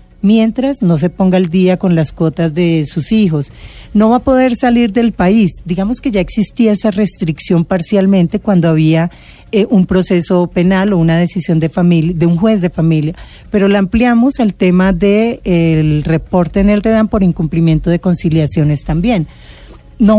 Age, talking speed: 40-59, 180 wpm